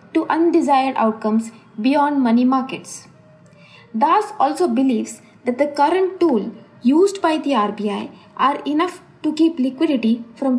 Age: 20-39